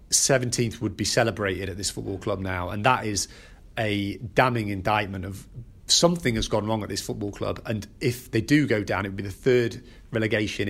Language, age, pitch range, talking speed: English, 40-59, 100-120 Hz, 200 wpm